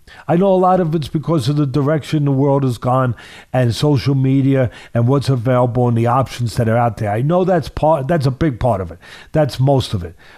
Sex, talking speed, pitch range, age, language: male, 235 wpm, 130-185 Hz, 50-69, English